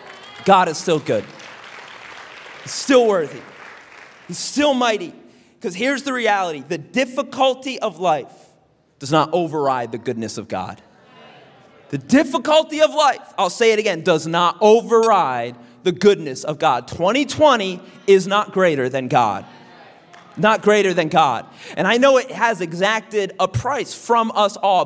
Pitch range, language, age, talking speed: 170-250 Hz, English, 30-49, 145 wpm